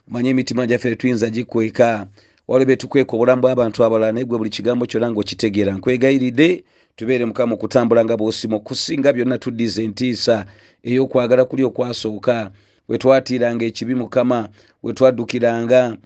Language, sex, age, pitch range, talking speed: English, male, 40-59, 115-130 Hz, 140 wpm